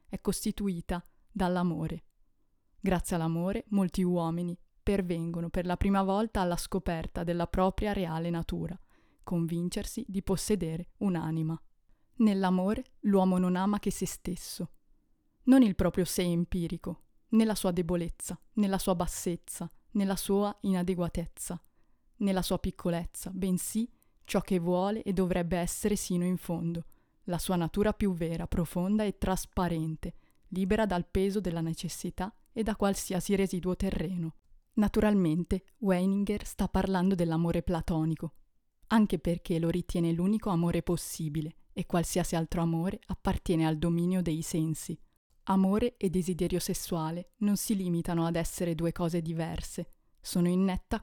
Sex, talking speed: female, 130 wpm